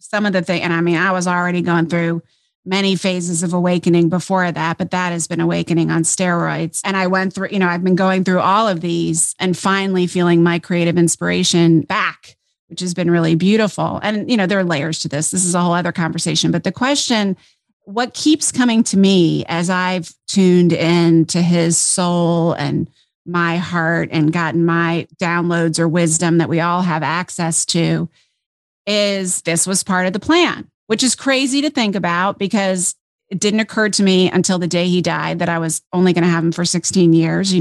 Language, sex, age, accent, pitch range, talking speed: English, female, 30-49, American, 170-190 Hz, 205 wpm